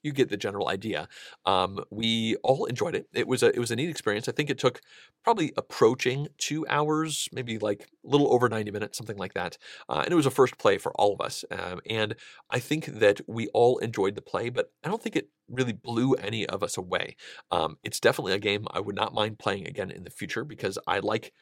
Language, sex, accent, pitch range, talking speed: English, male, American, 110-155 Hz, 240 wpm